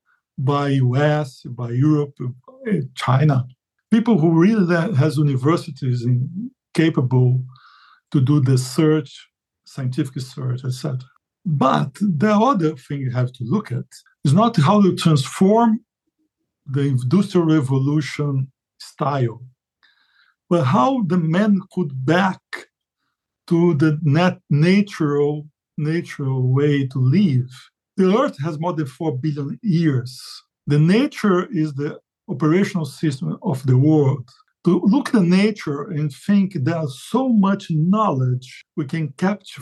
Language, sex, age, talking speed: English, male, 50-69, 125 wpm